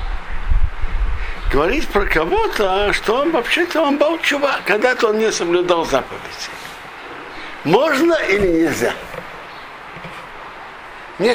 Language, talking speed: Russian, 95 wpm